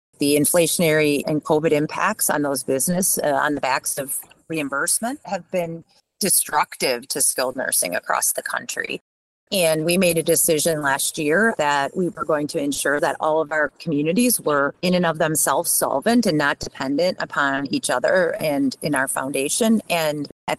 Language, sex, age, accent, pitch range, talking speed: English, female, 40-59, American, 150-200 Hz, 170 wpm